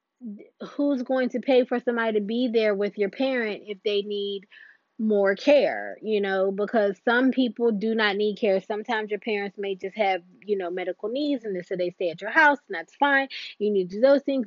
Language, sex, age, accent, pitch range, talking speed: English, female, 20-39, American, 200-240 Hz, 215 wpm